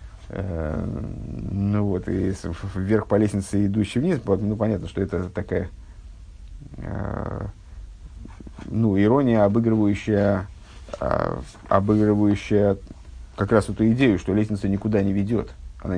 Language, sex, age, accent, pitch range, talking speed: Russian, male, 50-69, native, 95-115 Hz, 100 wpm